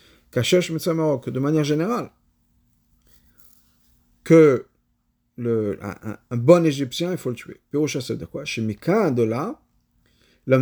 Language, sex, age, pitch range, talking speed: French, male, 50-69, 115-165 Hz, 130 wpm